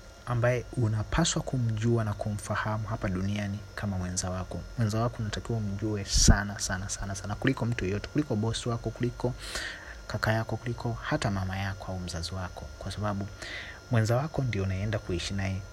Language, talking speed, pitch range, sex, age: Swahili, 160 wpm, 100-120 Hz, male, 30-49